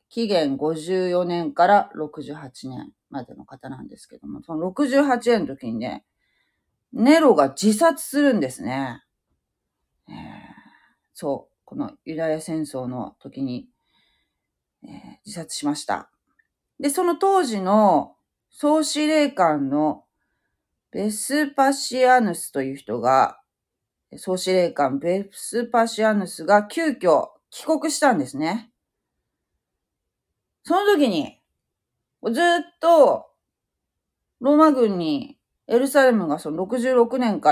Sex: female